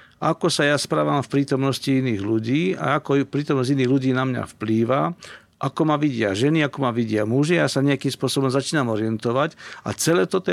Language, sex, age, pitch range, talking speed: Slovak, male, 50-69, 120-150 Hz, 190 wpm